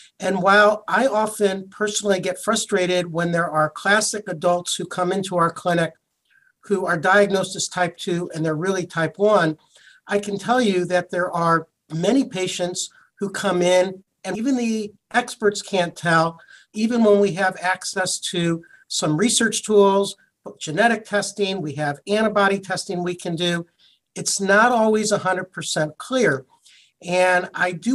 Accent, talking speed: American, 155 wpm